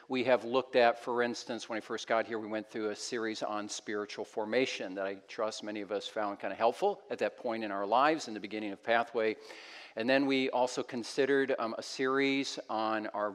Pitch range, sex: 110-140 Hz, male